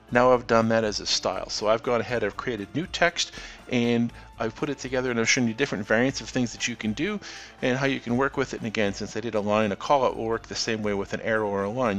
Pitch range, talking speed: 105-125 Hz, 295 wpm